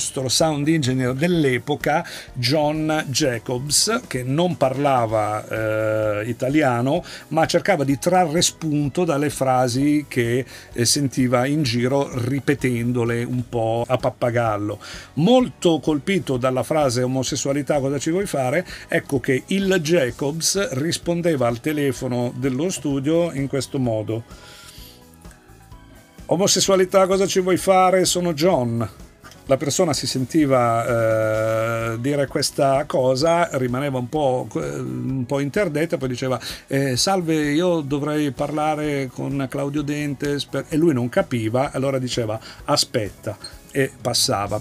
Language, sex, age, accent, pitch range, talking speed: Italian, male, 50-69, native, 120-155 Hz, 115 wpm